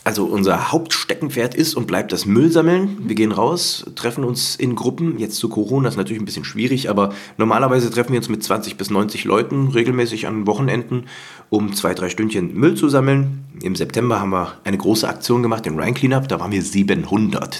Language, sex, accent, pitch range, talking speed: German, male, German, 100-125 Hz, 200 wpm